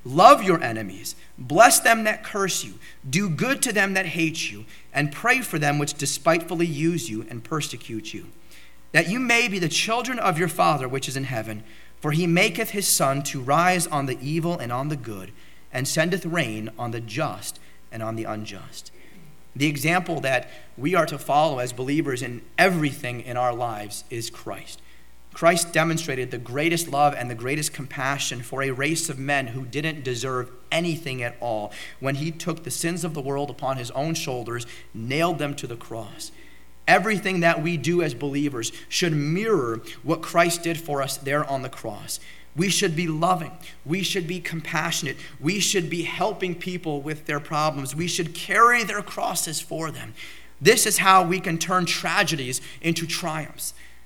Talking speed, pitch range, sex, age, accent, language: 185 wpm, 125-170 Hz, male, 30-49, American, English